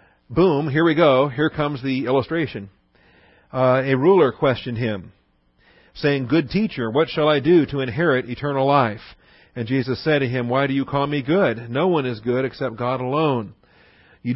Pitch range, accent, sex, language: 115-150 Hz, American, male, English